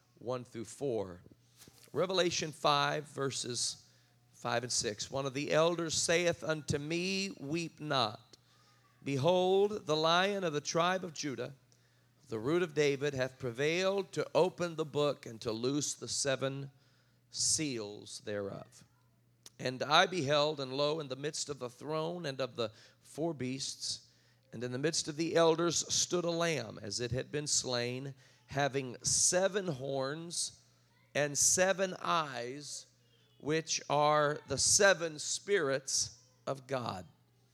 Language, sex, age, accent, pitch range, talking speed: English, male, 40-59, American, 125-160 Hz, 140 wpm